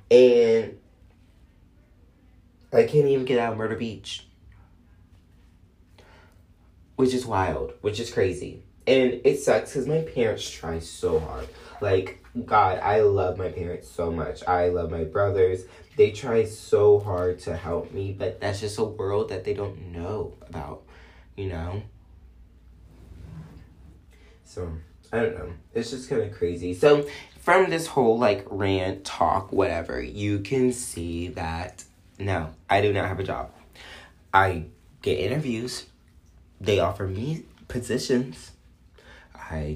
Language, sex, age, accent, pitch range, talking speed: English, male, 20-39, American, 85-105 Hz, 135 wpm